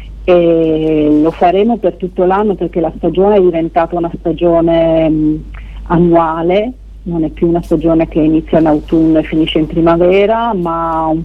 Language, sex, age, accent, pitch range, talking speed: Italian, female, 50-69, native, 165-185 Hz, 155 wpm